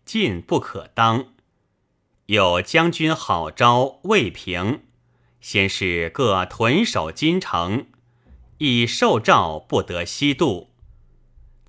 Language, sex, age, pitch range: Chinese, male, 30-49, 95-130 Hz